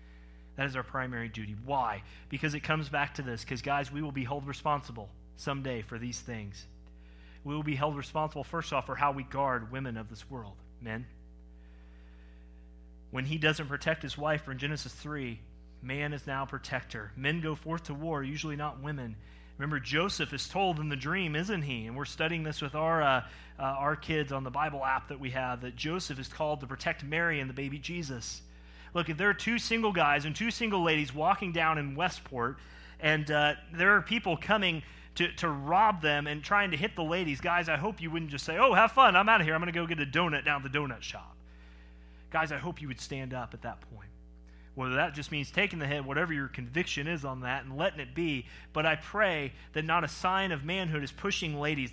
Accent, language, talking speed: American, English, 225 wpm